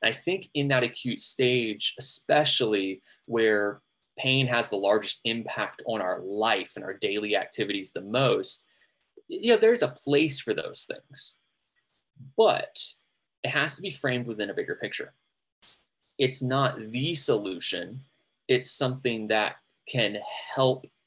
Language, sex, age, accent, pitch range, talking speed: English, male, 20-39, American, 110-135 Hz, 140 wpm